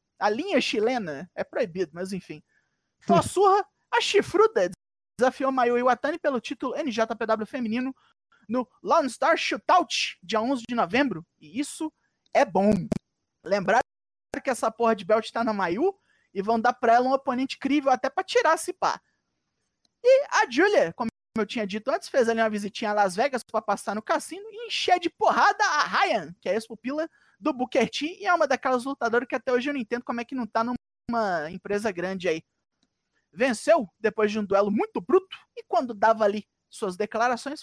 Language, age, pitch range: Portuguese, 20-39, 215-315 Hz